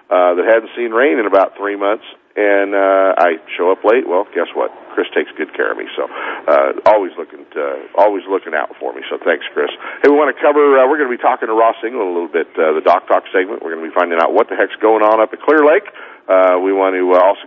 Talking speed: 275 wpm